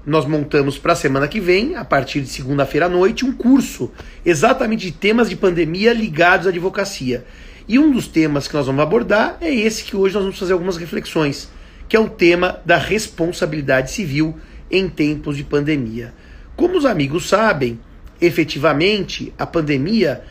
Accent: Brazilian